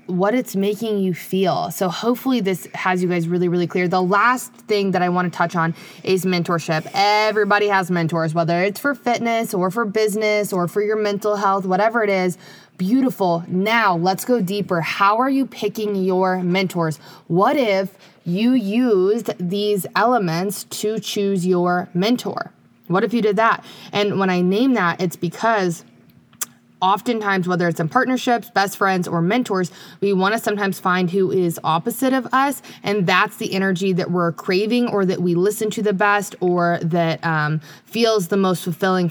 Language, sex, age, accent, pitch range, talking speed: English, female, 20-39, American, 175-210 Hz, 180 wpm